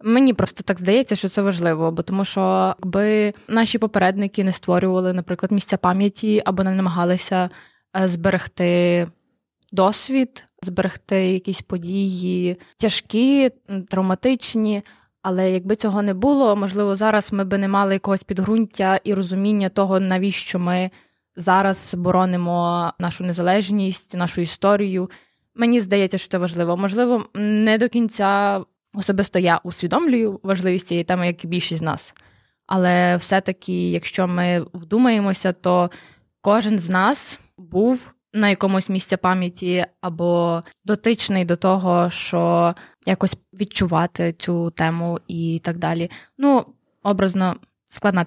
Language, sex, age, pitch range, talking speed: Ukrainian, female, 20-39, 180-205 Hz, 125 wpm